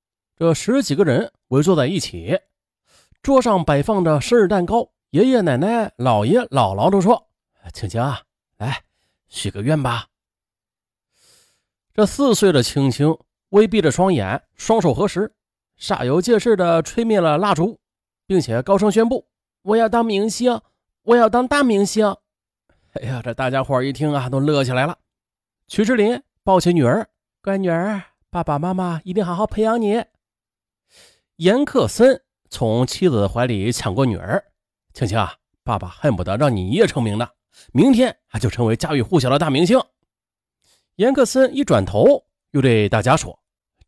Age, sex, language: 30-49, male, Chinese